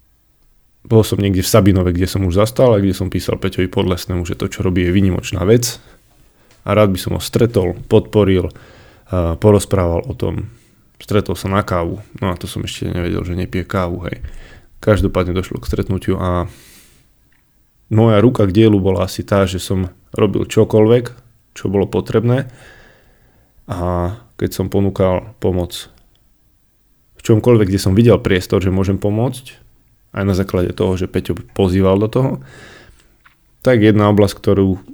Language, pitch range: Slovak, 90-110 Hz